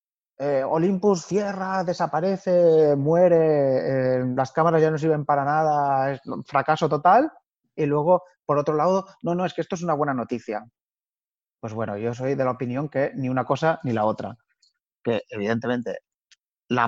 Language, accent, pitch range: Spanish, Spanish, 120-145 Hz